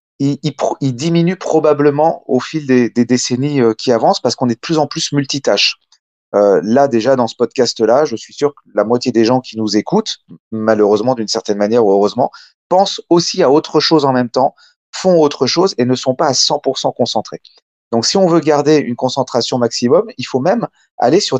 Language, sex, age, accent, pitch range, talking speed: French, male, 30-49, French, 120-155 Hz, 215 wpm